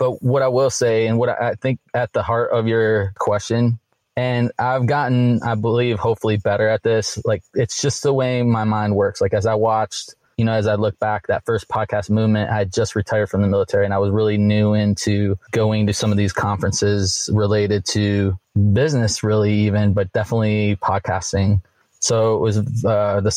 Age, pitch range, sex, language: 20-39, 105-115 Hz, male, English